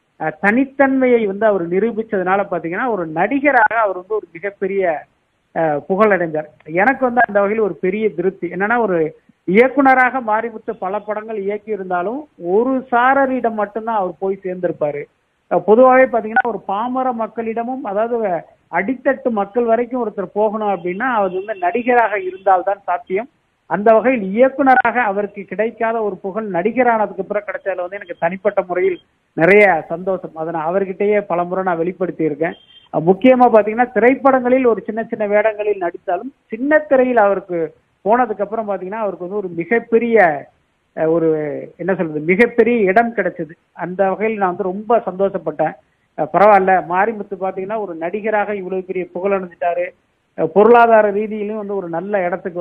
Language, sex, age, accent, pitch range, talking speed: Tamil, male, 50-69, native, 175-225 Hz, 130 wpm